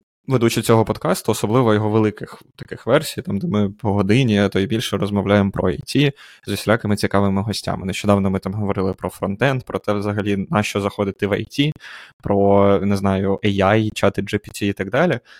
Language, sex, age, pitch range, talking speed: Ukrainian, male, 20-39, 100-115 Hz, 180 wpm